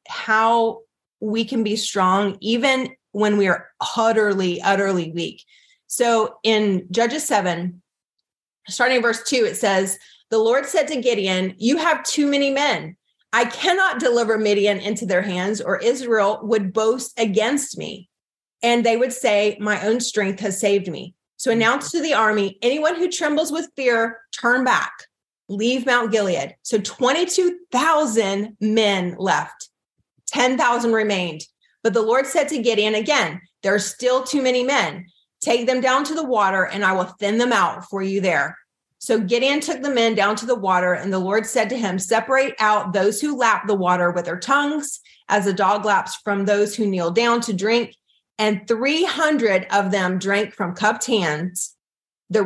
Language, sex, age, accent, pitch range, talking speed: English, female, 30-49, American, 195-255 Hz, 170 wpm